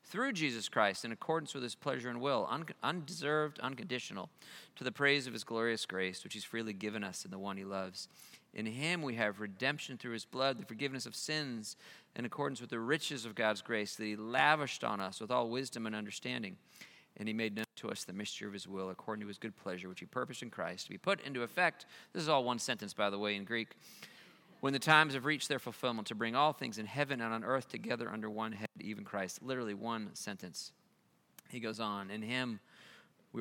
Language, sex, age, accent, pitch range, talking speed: English, male, 40-59, American, 105-135 Hz, 225 wpm